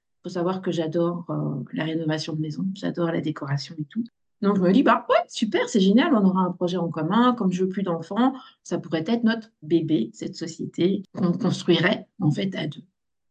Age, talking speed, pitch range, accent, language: 50-69, 205 wpm, 175-215 Hz, French, French